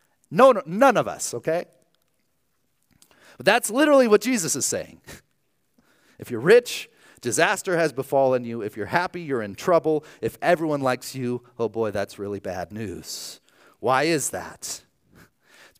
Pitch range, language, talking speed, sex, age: 110-170 Hz, English, 150 wpm, male, 30-49